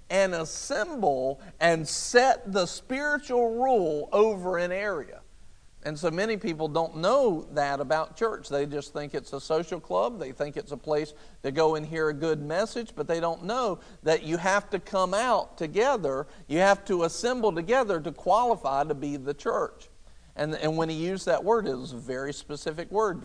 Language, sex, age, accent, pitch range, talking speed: English, male, 50-69, American, 155-200 Hz, 190 wpm